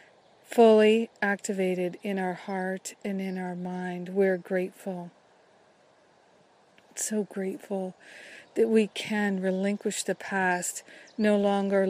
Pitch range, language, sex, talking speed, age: 185-210 Hz, English, female, 105 wpm, 40-59